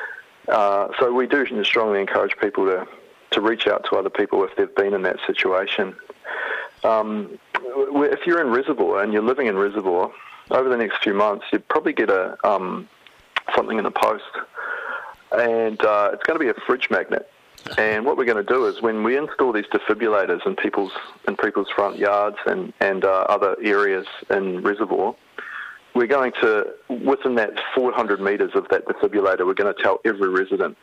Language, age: English, 40-59